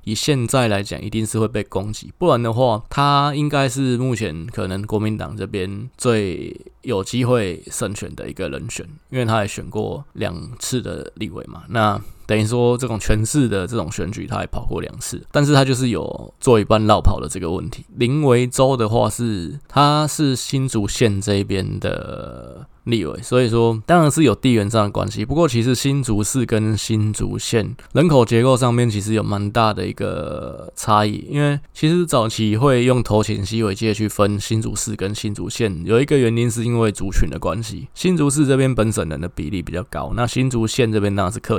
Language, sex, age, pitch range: Chinese, male, 20-39, 105-130 Hz